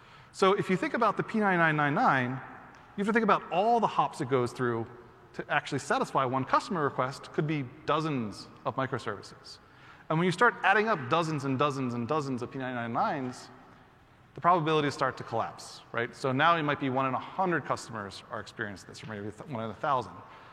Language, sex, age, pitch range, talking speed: English, male, 30-49, 130-195 Hz, 195 wpm